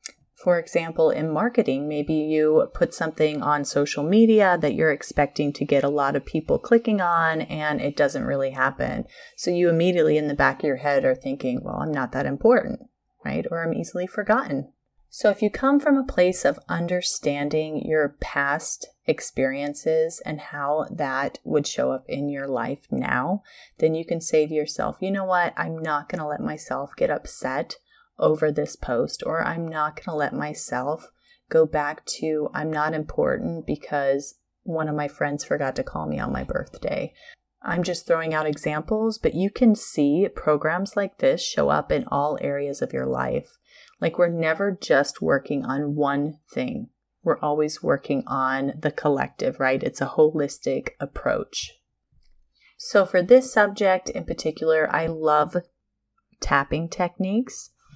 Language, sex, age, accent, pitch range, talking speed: English, female, 30-49, American, 145-180 Hz, 170 wpm